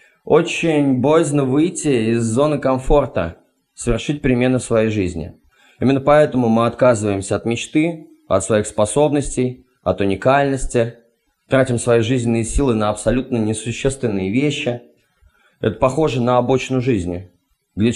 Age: 20-39